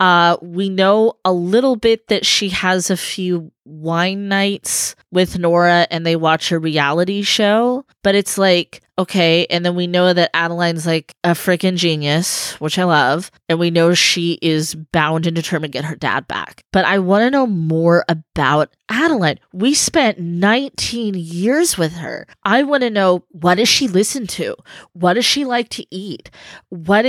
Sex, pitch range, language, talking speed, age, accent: female, 170-200 Hz, English, 180 wpm, 20-39, American